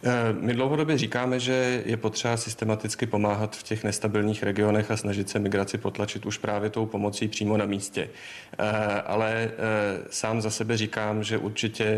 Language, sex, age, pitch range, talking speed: Czech, male, 40-59, 105-110 Hz, 155 wpm